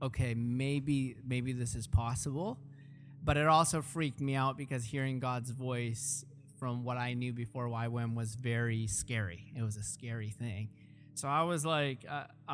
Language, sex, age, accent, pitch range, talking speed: English, male, 20-39, American, 125-155 Hz, 165 wpm